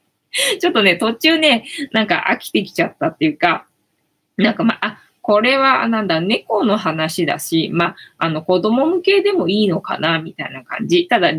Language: Japanese